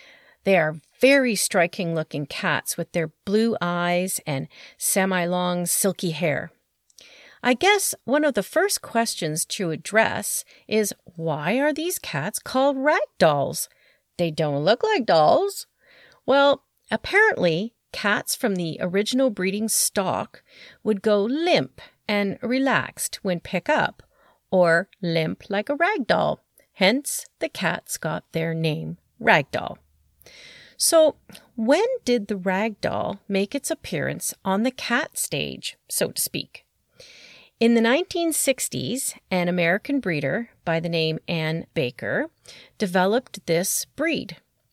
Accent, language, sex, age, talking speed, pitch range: American, English, female, 40-59, 125 wpm, 170-260 Hz